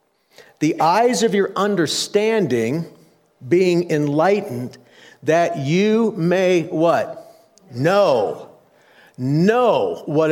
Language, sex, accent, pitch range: English, male, American, 165-225 Hz